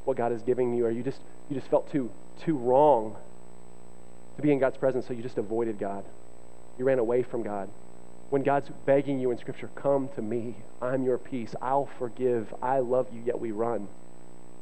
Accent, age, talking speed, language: American, 30-49, 200 wpm, English